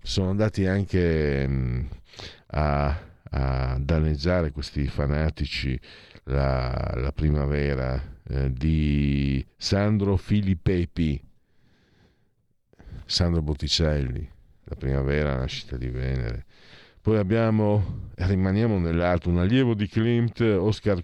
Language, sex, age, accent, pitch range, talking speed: Italian, male, 50-69, native, 70-105 Hz, 90 wpm